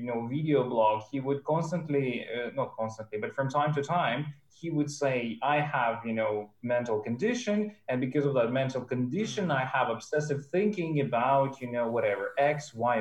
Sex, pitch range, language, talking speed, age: male, 125-165 Hz, English, 180 wpm, 20-39